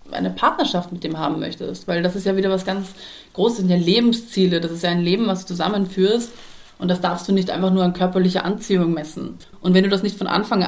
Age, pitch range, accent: 30-49, 185-235 Hz, German